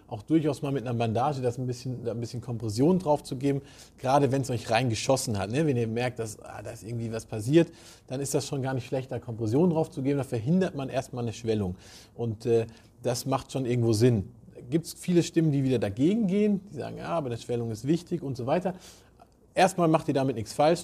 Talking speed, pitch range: 240 wpm, 115-150 Hz